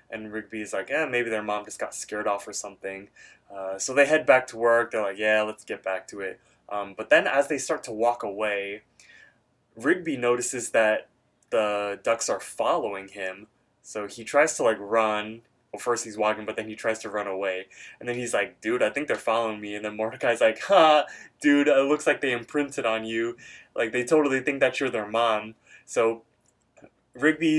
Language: English